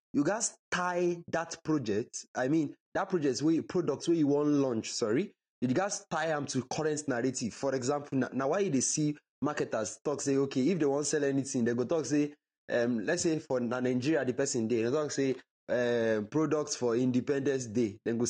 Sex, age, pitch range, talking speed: male, 20-39, 125-165 Hz, 205 wpm